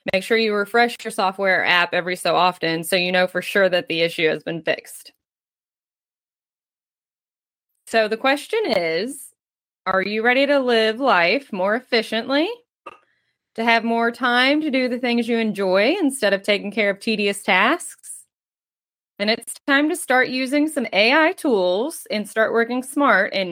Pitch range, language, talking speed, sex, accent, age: 195-265 Hz, English, 165 wpm, female, American, 20-39